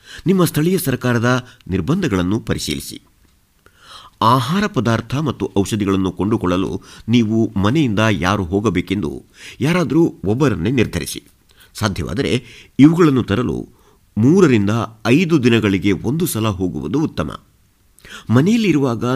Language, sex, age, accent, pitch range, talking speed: Kannada, male, 50-69, native, 90-125 Hz, 90 wpm